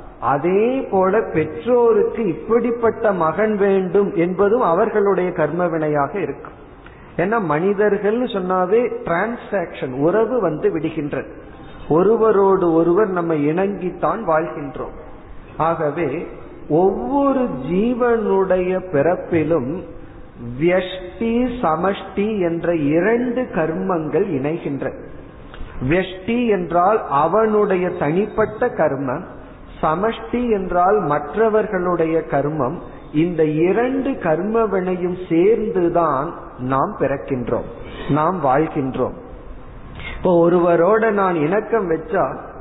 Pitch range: 160-215 Hz